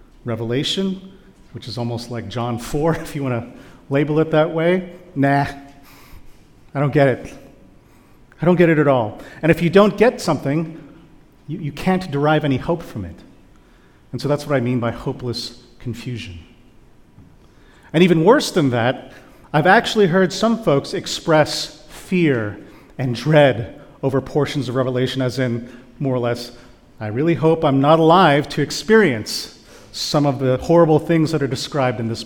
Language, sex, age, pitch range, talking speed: English, male, 40-59, 125-160 Hz, 165 wpm